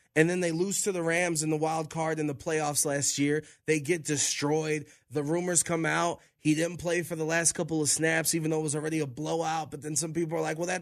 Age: 20-39